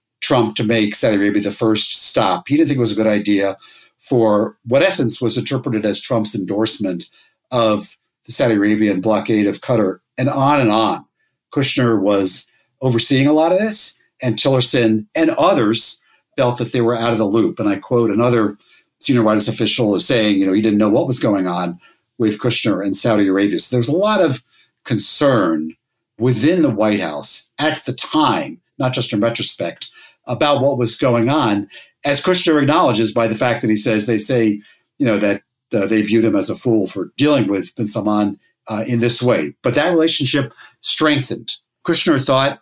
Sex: male